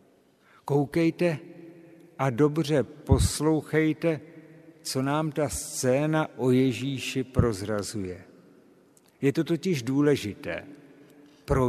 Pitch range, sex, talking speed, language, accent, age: 125-155 Hz, male, 80 wpm, Czech, native, 60-79